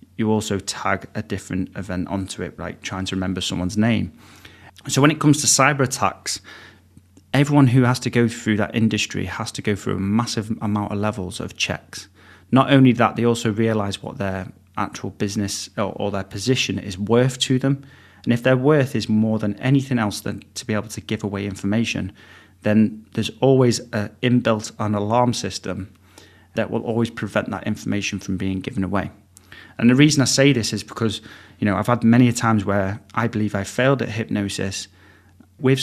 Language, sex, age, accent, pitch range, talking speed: English, male, 30-49, British, 100-125 Hz, 195 wpm